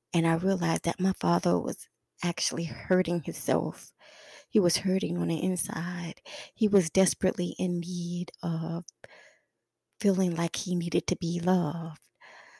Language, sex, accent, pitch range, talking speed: English, female, American, 165-190 Hz, 140 wpm